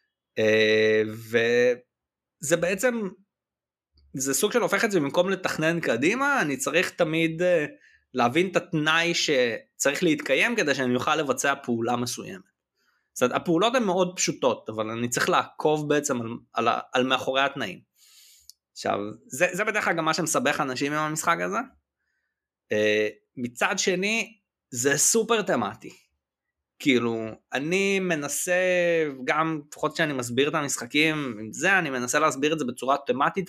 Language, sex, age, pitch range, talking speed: Hebrew, male, 20-39, 125-185 Hz, 145 wpm